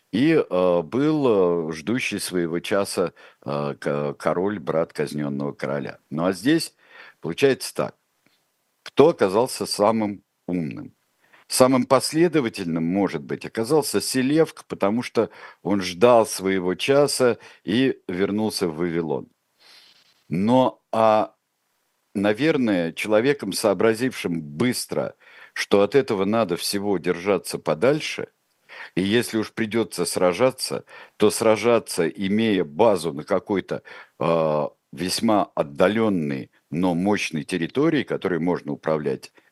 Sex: male